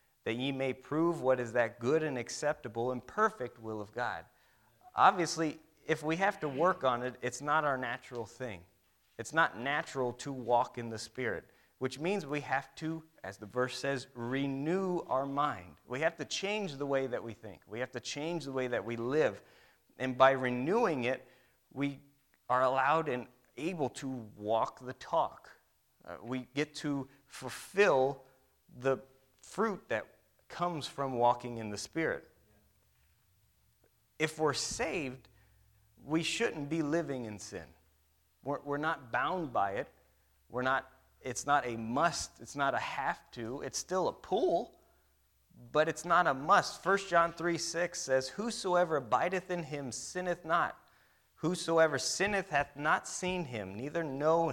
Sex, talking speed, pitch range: male, 160 wpm, 120-160 Hz